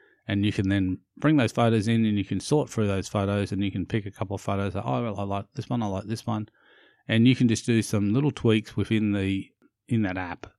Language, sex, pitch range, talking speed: English, male, 95-115 Hz, 265 wpm